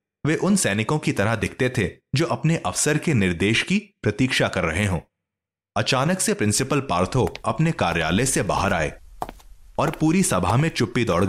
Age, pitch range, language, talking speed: 30-49, 100-140 Hz, Hindi, 170 wpm